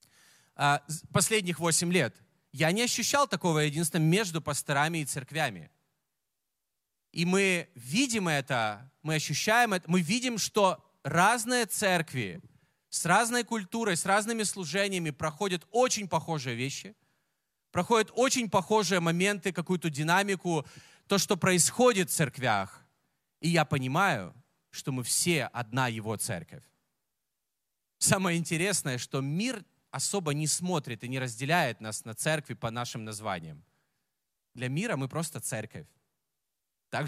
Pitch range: 135-190 Hz